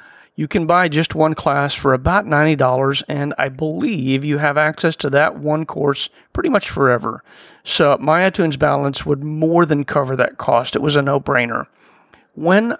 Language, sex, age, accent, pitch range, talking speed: English, male, 40-59, American, 125-155 Hz, 175 wpm